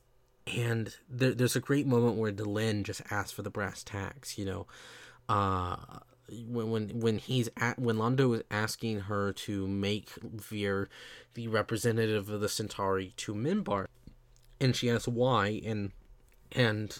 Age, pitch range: 20-39, 105-125 Hz